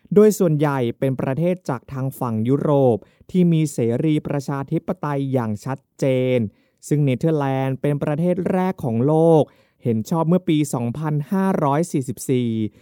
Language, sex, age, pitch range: Thai, male, 20-39, 130-180 Hz